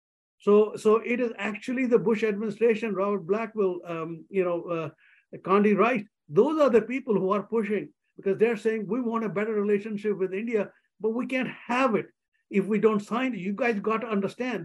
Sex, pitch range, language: male, 185-225 Hz, English